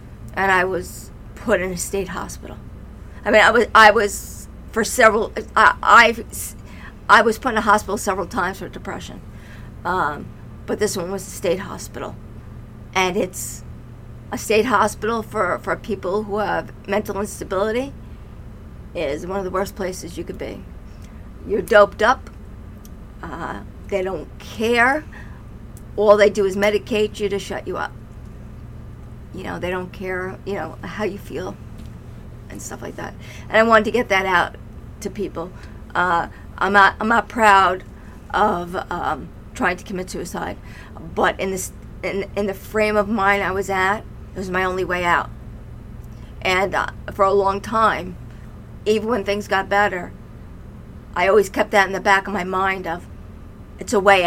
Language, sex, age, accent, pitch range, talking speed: English, female, 50-69, American, 165-205 Hz, 165 wpm